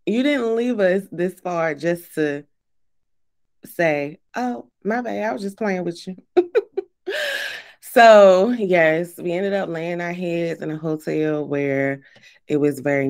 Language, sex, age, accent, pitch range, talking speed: English, female, 20-39, American, 145-190 Hz, 150 wpm